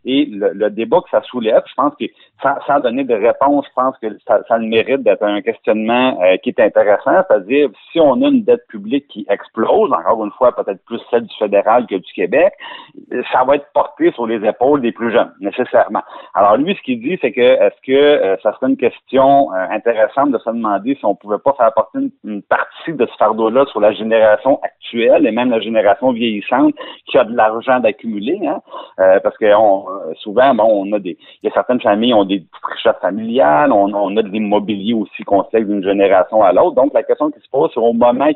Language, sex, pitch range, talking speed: French, male, 110-145 Hz, 230 wpm